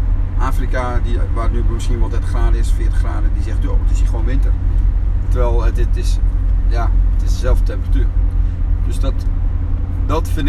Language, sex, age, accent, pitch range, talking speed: Dutch, male, 40-59, Dutch, 80-90 Hz, 175 wpm